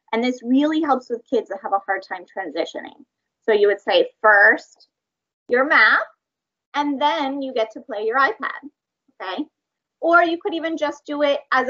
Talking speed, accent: 185 wpm, American